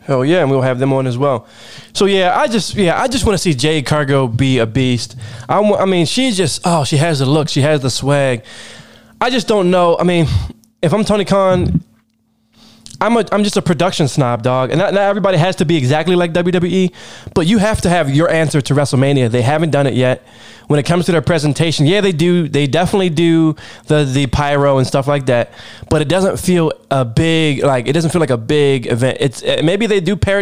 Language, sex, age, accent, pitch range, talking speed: English, male, 20-39, American, 125-175 Hz, 235 wpm